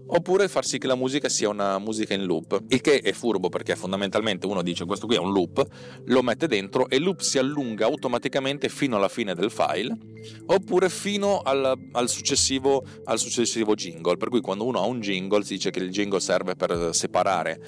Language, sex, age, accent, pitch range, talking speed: Italian, male, 30-49, native, 95-130 Hz, 205 wpm